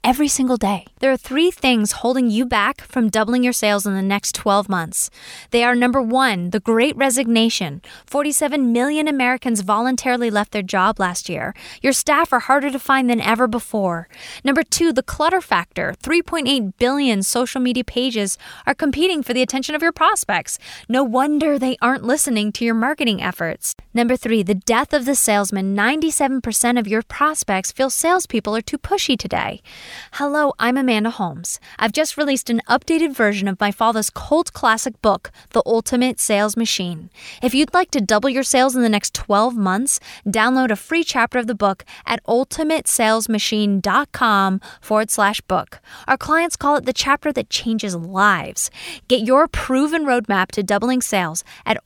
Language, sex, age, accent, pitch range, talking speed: English, female, 10-29, American, 210-270 Hz, 170 wpm